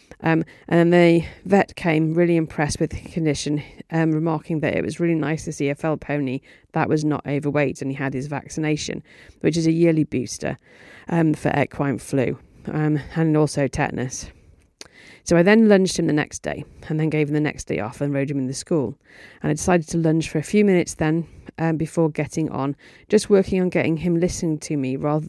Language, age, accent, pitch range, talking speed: English, 30-49, British, 150-180 Hz, 215 wpm